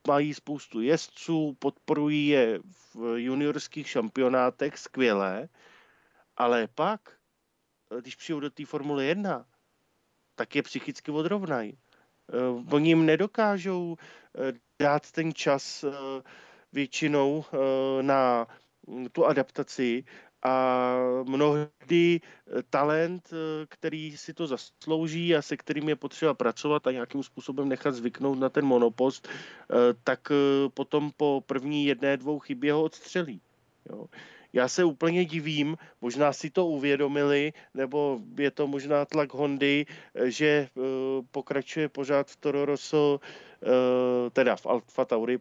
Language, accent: Czech, native